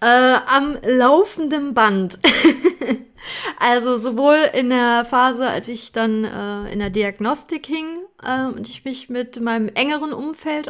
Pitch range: 220-265 Hz